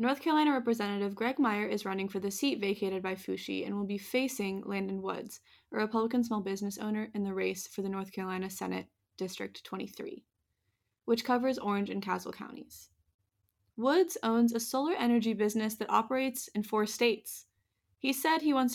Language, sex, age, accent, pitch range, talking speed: English, female, 20-39, American, 190-245 Hz, 175 wpm